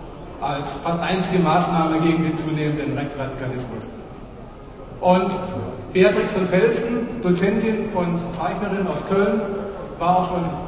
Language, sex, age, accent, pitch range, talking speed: German, male, 40-59, German, 155-195 Hz, 110 wpm